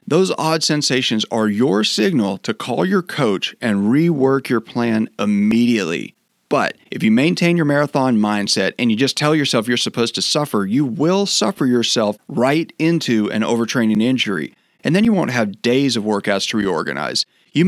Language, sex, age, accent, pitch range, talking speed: English, male, 40-59, American, 115-165 Hz, 175 wpm